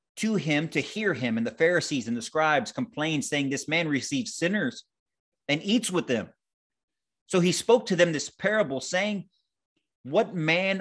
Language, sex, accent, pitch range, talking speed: English, male, American, 150-195 Hz, 170 wpm